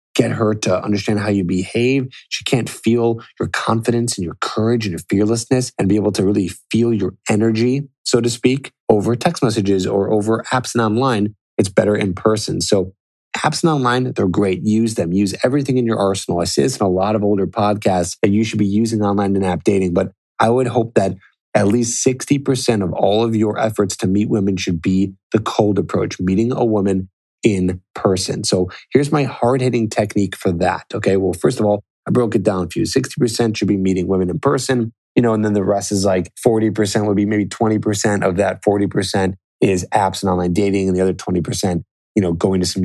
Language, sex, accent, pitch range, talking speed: English, male, American, 90-115 Hz, 220 wpm